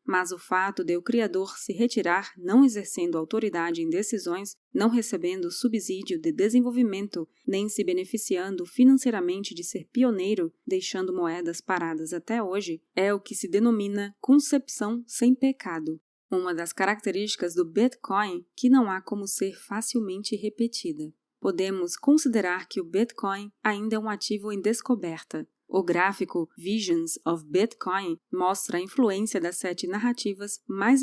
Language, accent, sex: Portuguese, Brazilian, female